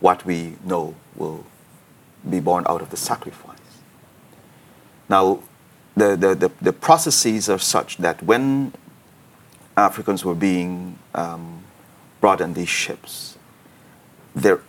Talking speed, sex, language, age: 115 wpm, male, English, 40-59